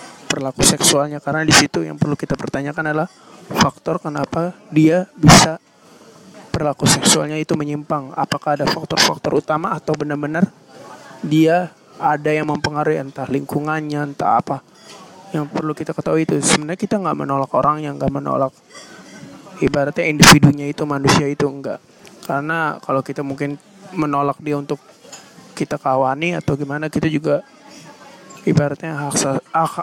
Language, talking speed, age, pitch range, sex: Indonesian, 135 wpm, 20-39, 140-160 Hz, male